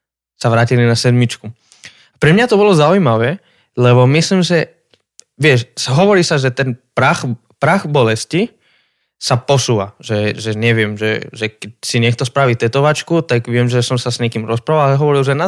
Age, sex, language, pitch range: 20-39, male, Slovak, 120-155 Hz